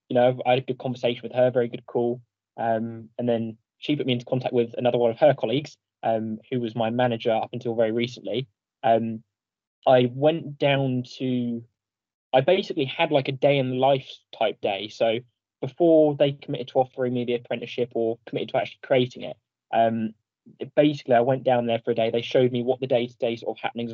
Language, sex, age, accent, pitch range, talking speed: English, male, 10-29, British, 115-130 Hz, 215 wpm